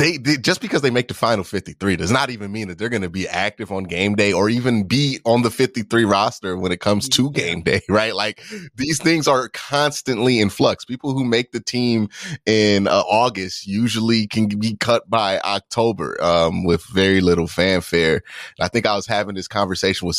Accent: American